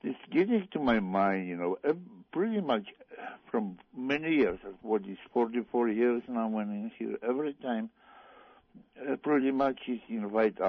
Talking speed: 155 wpm